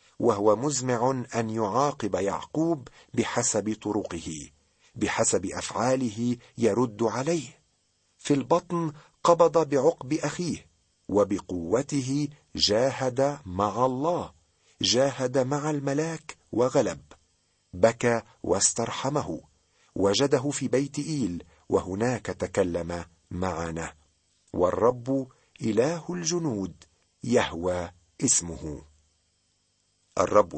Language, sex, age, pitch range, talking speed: Arabic, male, 50-69, 95-145 Hz, 75 wpm